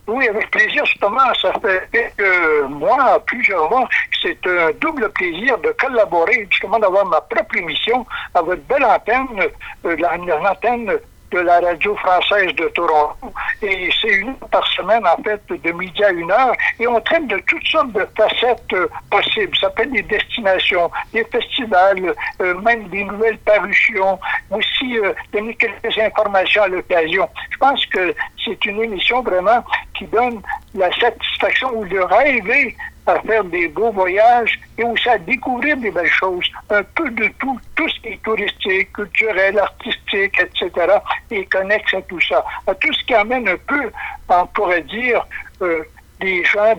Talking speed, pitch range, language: 170 wpm, 190-270 Hz, French